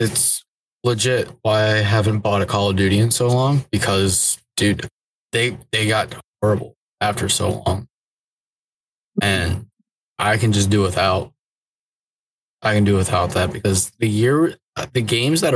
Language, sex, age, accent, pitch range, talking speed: English, male, 20-39, American, 100-115 Hz, 150 wpm